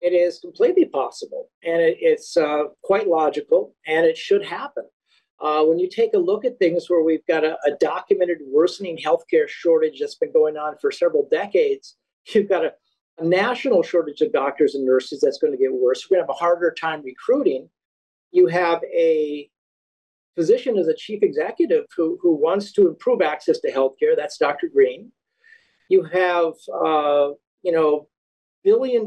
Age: 50-69